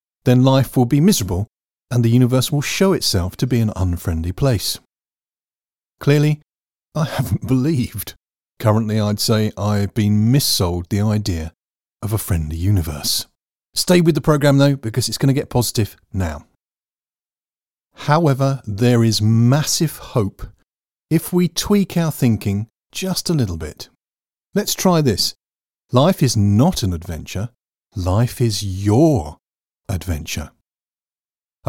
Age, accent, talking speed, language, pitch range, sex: 50-69, British, 135 wpm, English, 100-150 Hz, male